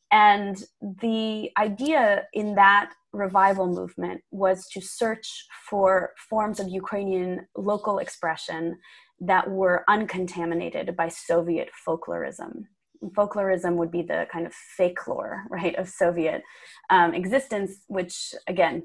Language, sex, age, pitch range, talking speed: English, female, 20-39, 180-225 Hz, 120 wpm